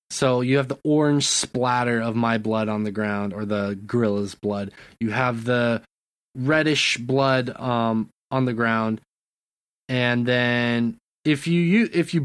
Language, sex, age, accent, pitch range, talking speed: English, male, 20-39, American, 115-145 Hz, 155 wpm